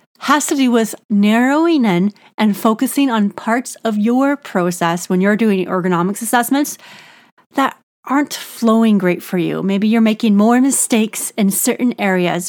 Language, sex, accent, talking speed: English, female, American, 155 wpm